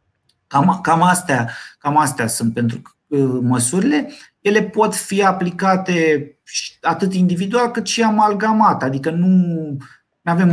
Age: 30-49